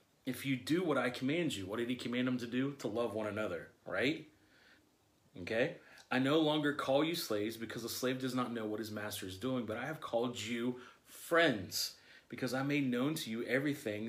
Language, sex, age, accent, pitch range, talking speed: English, male, 30-49, American, 115-140 Hz, 215 wpm